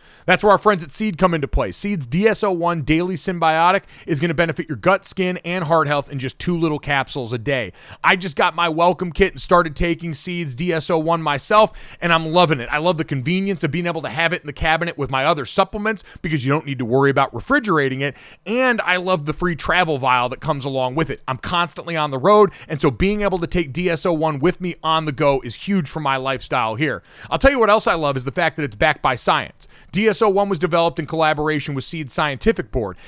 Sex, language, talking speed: male, English, 240 wpm